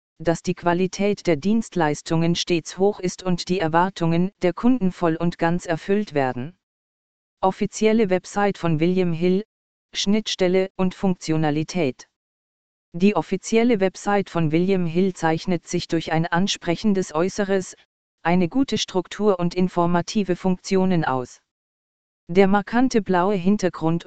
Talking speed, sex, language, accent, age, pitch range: 120 wpm, female, German, German, 40-59, 165-195 Hz